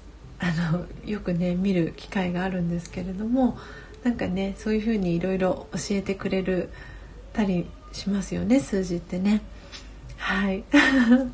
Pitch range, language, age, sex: 205-250 Hz, Japanese, 40-59, female